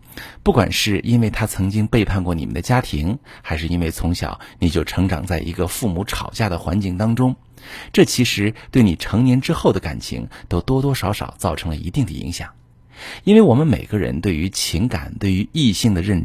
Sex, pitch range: male, 85-125 Hz